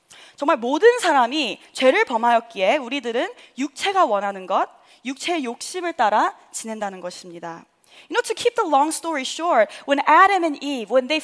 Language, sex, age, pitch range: Korean, female, 20-39, 235-340 Hz